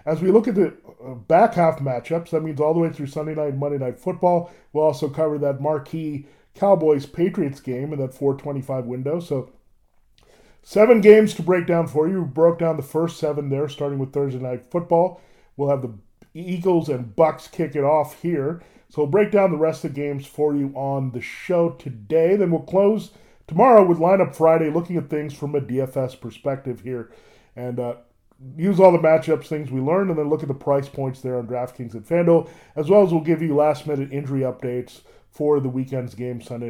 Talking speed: 210 wpm